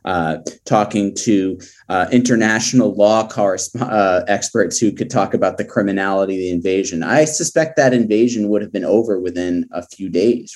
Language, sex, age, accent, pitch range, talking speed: English, male, 30-49, American, 90-110 Hz, 170 wpm